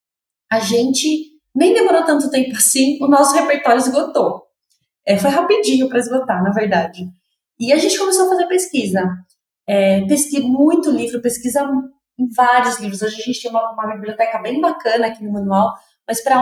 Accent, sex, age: Brazilian, female, 20-39